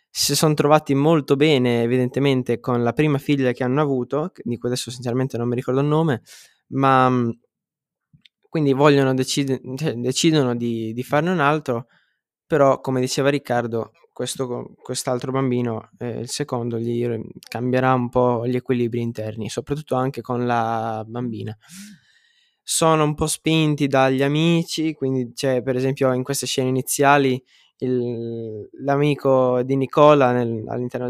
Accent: native